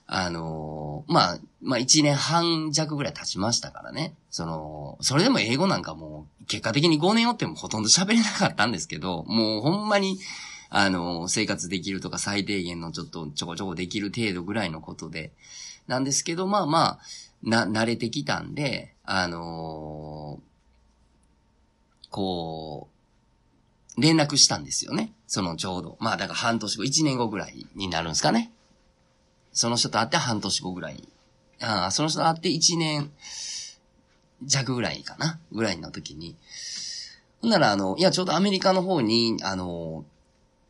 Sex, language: male, Japanese